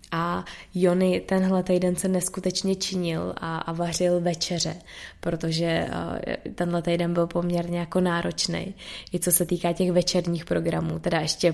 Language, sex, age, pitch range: Czech, female, 20-39, 165-180 Hz